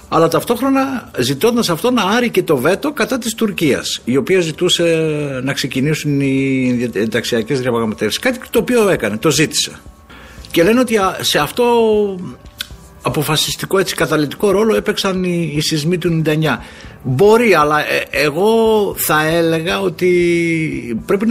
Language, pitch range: Greek, 130-185 Hz